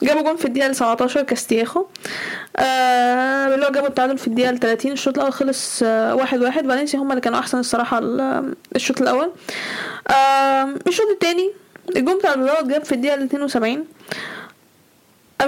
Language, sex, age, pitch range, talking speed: Arabic, female, 10-29, 265-335 Hz, 155 wpm